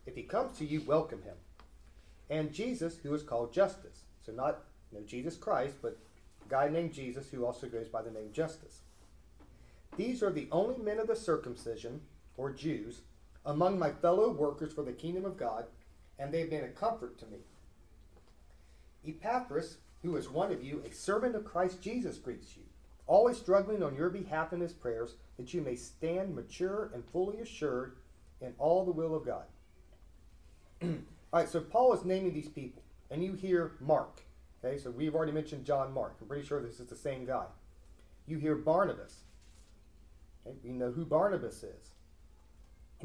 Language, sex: English, male